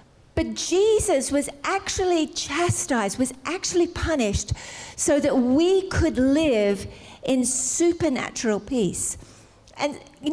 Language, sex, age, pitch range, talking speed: English, female, 50-69, 230-310 Hz, 100 wpm